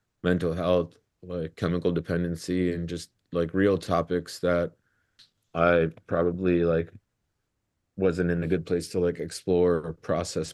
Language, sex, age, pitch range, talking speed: English, male, 30-49, 85-95 Hz, 135 wpm